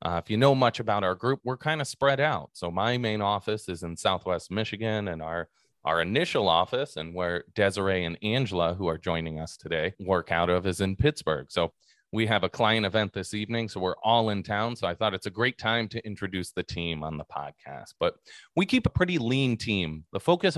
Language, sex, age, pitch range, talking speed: English, male, 30-49, 90-115 Hz, 225 wpm